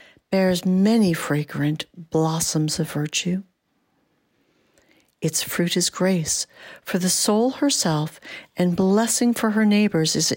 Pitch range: 165-225 Hz